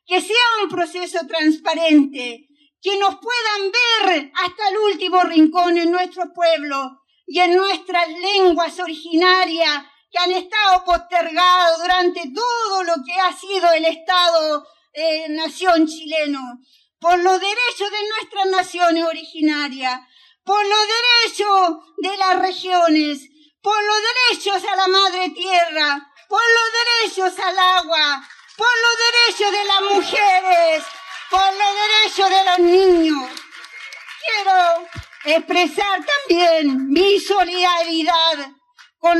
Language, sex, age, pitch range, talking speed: Spanish, female, 50-69, 320-380 Hz, 120 wpm